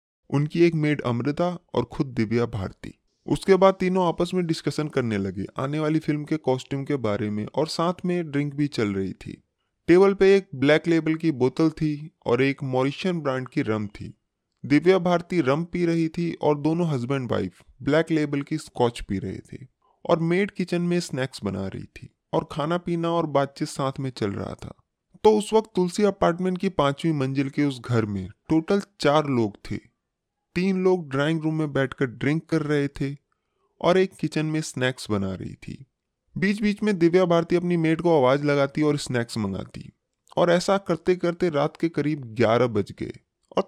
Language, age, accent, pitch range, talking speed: Hindi, 20-39, native, 130-175 Hz, 190 wpm